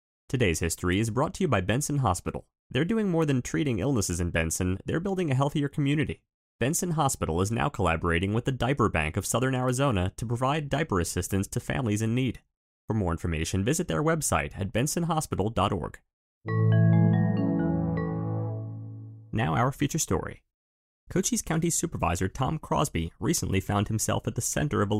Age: 30-49